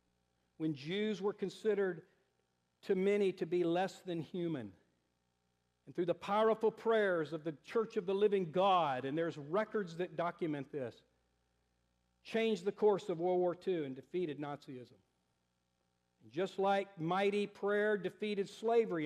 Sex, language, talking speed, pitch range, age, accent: male, English, 140 wpm, 130-205 Hz, 50-69, American